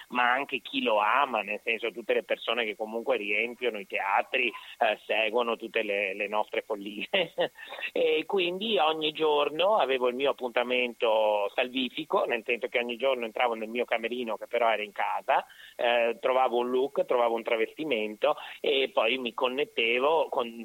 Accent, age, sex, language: native, 30-49, male, Italian